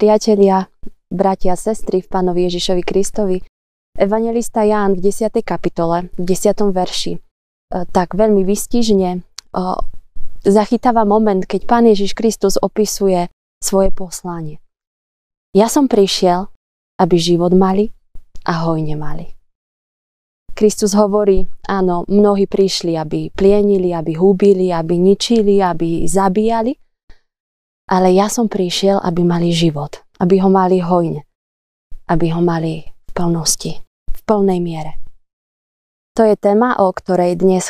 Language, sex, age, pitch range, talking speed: Slovak, female, 20-39, 170-200 Hz, 120 wpm